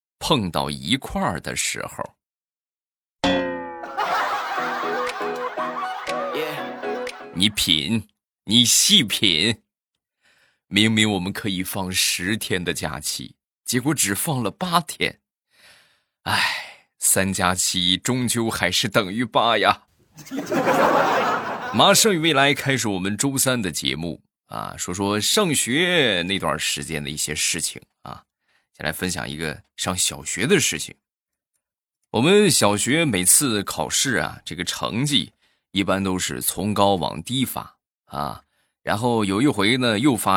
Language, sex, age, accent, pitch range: Chinese, male, 20-39, native, 85-120 Hz